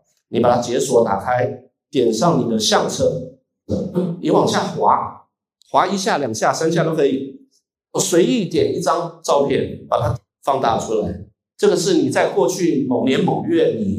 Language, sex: Chinese, male